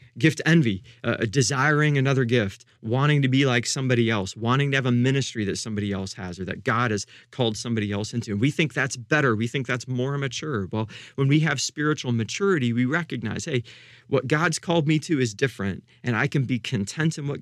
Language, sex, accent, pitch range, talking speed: English, male, American, 115-145 Hz, 215 wpm